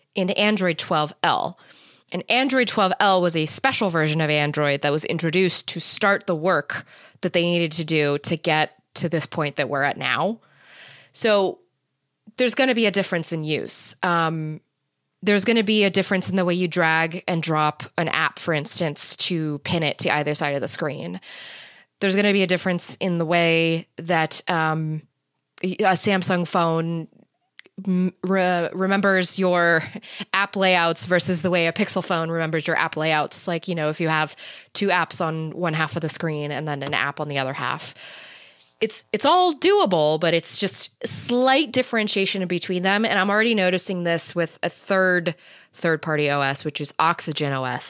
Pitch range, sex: 155-195 Hz, female